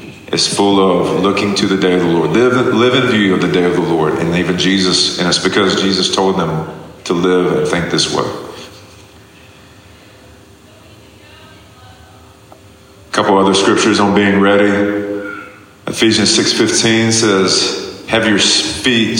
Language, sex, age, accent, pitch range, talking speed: Ukrainian, male, 40-59, American, 95-105 Hz, 145 wpm